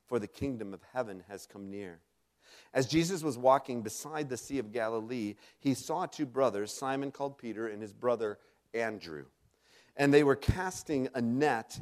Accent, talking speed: American, 175 wpm